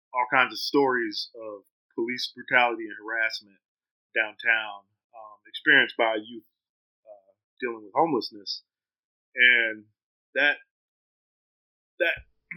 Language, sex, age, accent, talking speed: English, male, 30-49, American, 100 wpm